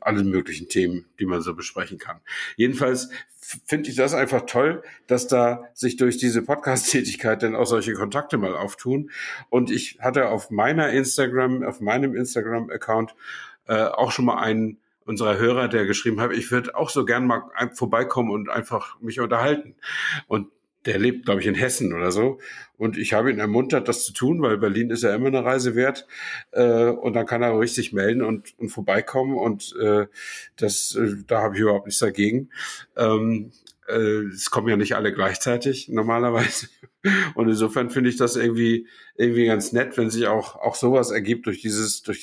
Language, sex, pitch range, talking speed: German, male, 110-130 Hz, 180 wpm